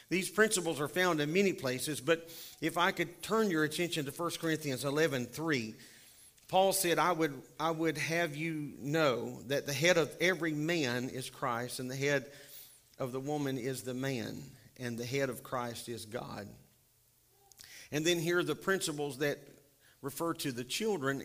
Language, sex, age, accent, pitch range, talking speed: English, male, 50-69, American, 135-170 Hz, 180 wpm